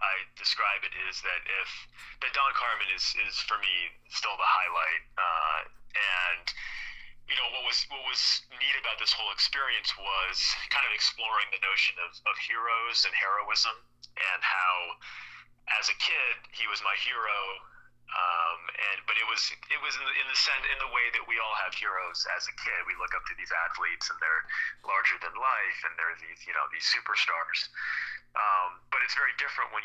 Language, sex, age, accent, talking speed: English, male, 30-49, American, 195 wpm